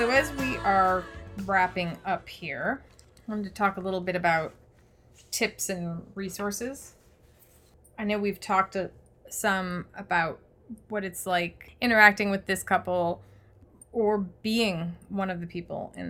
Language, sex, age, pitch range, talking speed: English, female, 30-49, 175-215 Hz, 140 wpm